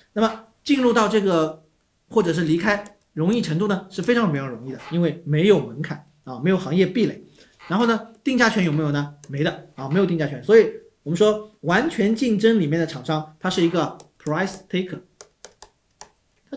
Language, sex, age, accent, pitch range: Chinese, male, 40-59, native, 155-225 Hz